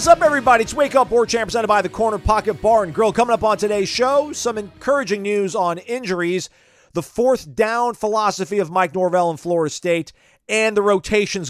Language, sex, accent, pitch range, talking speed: English, male, American, 140-205 Hz, 205 wpm